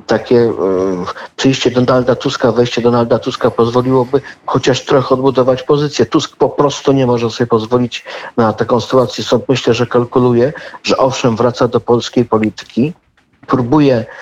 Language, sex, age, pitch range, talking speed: Polish, male, 50-69, 115-135 Hz, 140 wpm